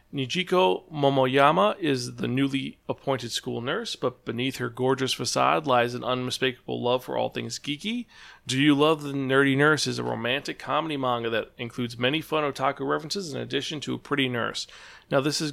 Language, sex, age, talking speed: English, male, 40-59, 180 wpm